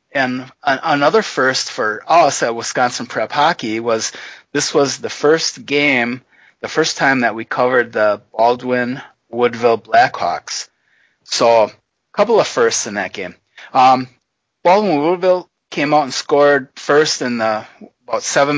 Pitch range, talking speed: 120-145 Hz, 140 wpm